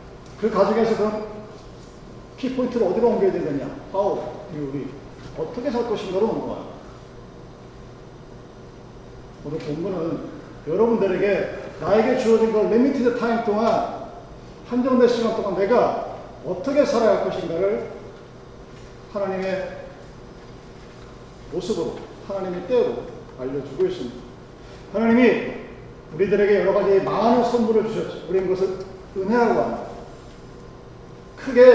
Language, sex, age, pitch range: Korean, male, 40-59, 180-240 Hz